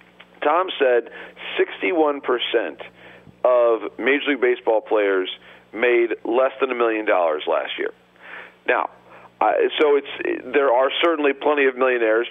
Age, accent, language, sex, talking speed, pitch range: 50-69, American, English, male, 120 wpm, 120-155 Hz